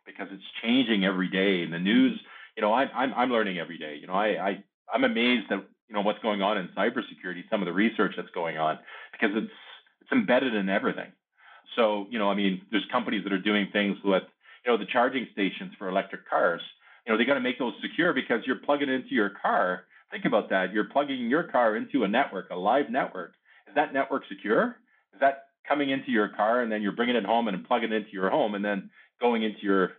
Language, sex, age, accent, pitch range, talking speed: English, male, 50-69, American, 95-130 Hz, 225 wpm